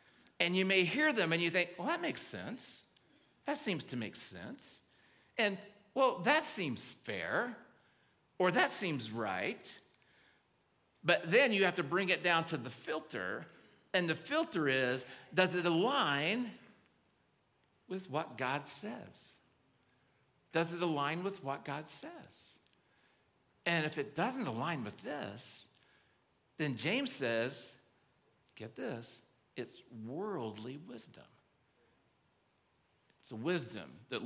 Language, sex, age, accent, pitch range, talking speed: English, male, 60-79, American, 135-185 Hz, 130 wpm